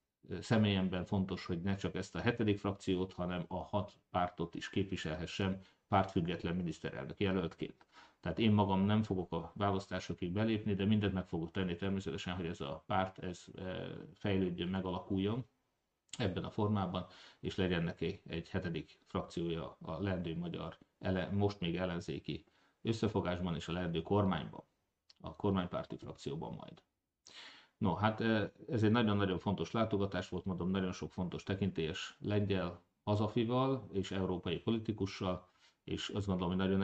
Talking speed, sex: 140 wpm, male